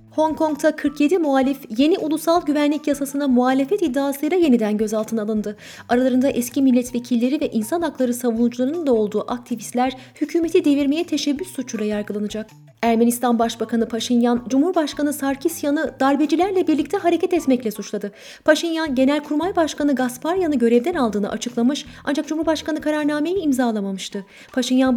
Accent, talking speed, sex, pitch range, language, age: native, 120 wpm, female, 235-295 Hz, Turkish, 30-49